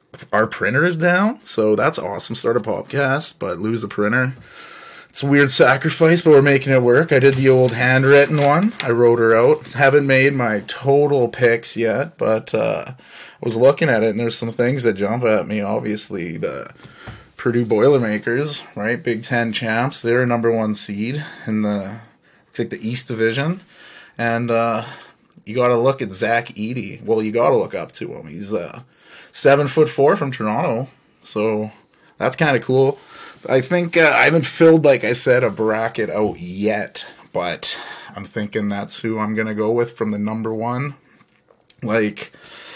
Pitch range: 110-135 Hz